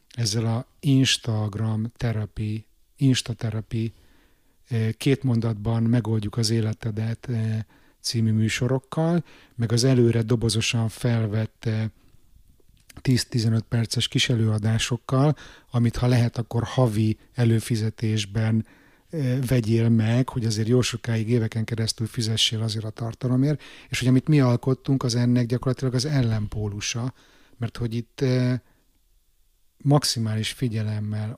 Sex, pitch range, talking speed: male, 110-125 Hz, 105 wpm